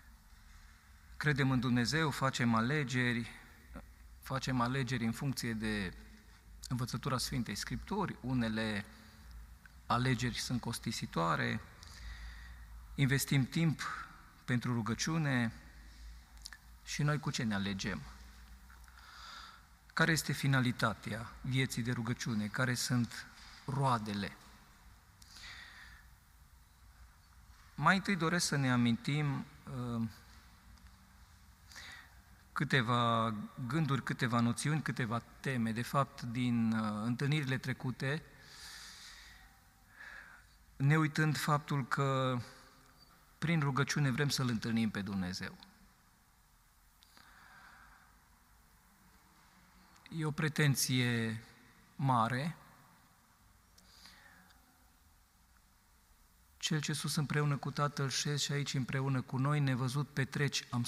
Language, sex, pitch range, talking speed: Romanian, male, 100-140 Hz, 80 wpm